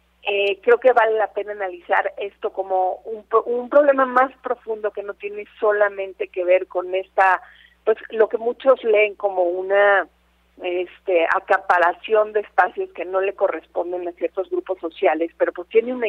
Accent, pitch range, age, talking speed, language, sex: Mexican, 180-215 Hz, 40-59, 170 wpm, Spanish, female